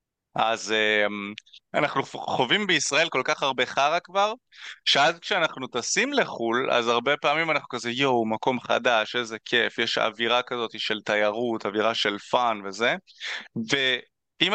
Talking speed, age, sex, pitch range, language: 140 wpm, 20-39, male, 110-135 Hz, Hebrew